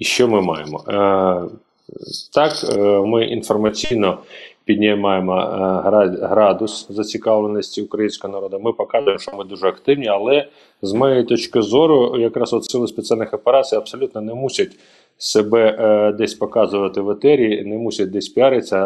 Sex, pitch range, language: male, 105-125 Hz, Ukrainian